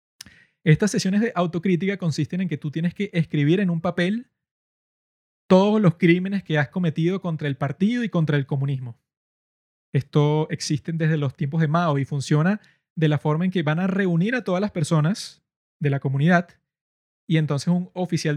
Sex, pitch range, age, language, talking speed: male, 155-185 Hz, 20-39, Spanish, 180 wpm